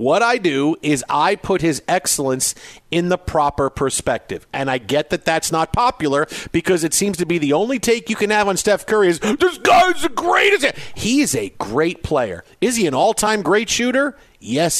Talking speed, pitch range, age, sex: 205 wpm, 150-200 Hz, 50-69, male